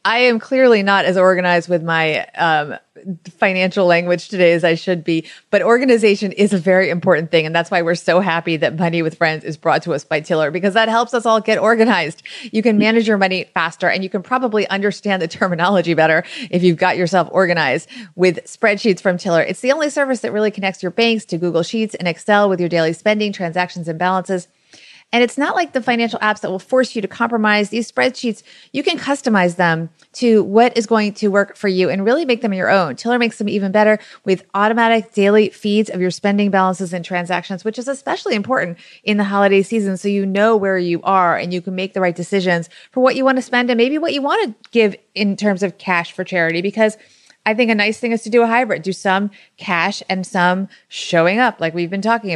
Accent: American